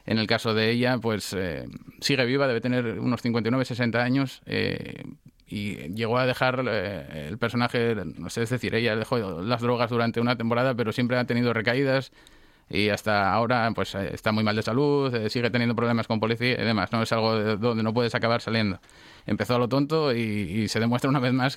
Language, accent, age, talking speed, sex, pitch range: Spanish, Spanish, 30-49, 210 wpm, male, 110-125 Hz